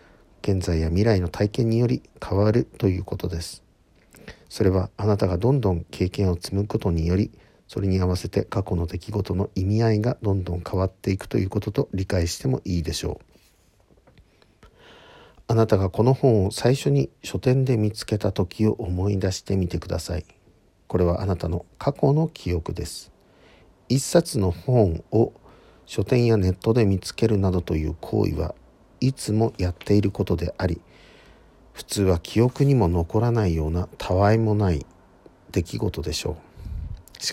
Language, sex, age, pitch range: Japanese, male, 50-69, 85-110 Hz